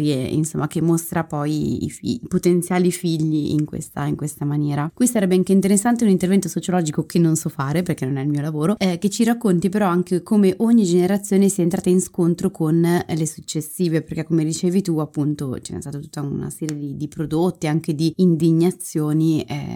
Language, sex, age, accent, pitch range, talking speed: Italian, female, 20-39, native, 155-185 Hz, 195 wpm